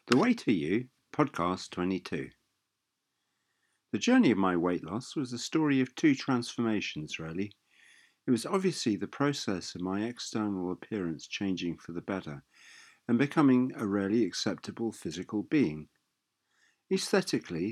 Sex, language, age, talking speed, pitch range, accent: male, English, 50-69, 135 wpm, 85-130 Hz, British